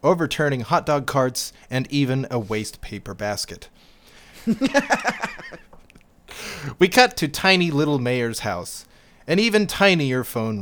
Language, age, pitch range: English, 30-49, 110-170 Hz